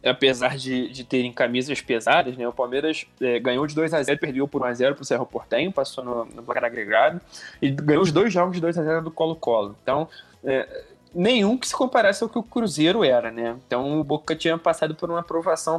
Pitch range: 130-170 Hz